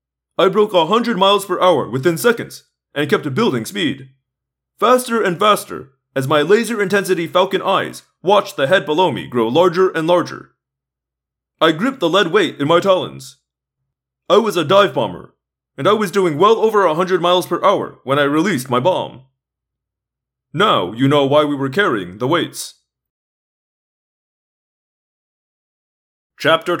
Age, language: 30-49, English